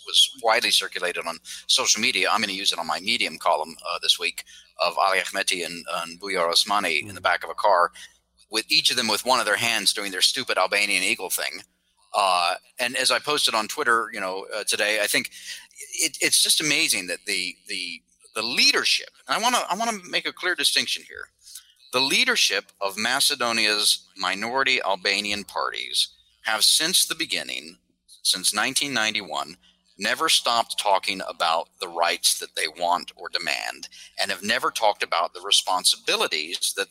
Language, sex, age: English, male, 30-49